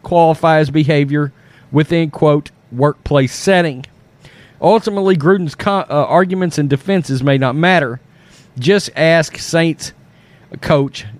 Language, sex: English, male